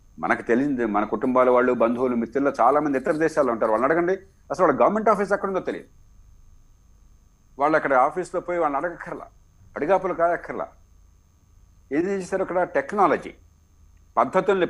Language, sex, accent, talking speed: Telugu, male, native, 135 wpm